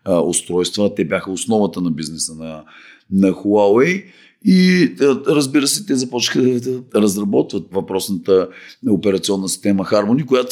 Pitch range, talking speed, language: 95-135 Hz, 120 wpm, Bulgarian